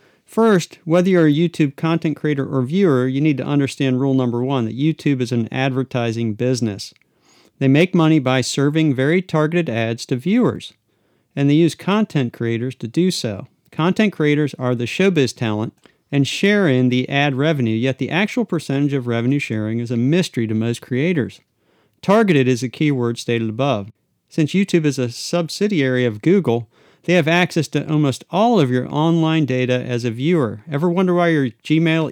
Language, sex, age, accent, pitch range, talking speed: English, male, 40-59, American, 125-165 Hz, 180 wpm